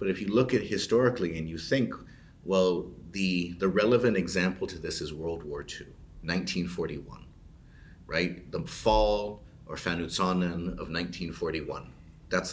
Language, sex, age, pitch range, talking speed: English, male, 40-59, 85-105 Hz, 135 wpm